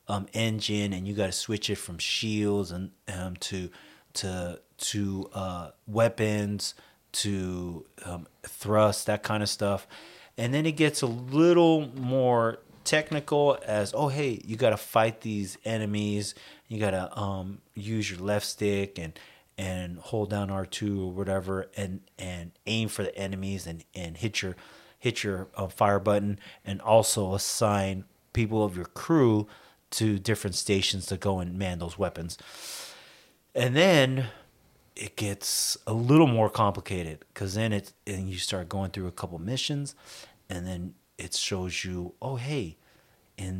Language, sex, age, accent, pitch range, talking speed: English, male, 30-49, American, 95-110 Hz, 155 wpm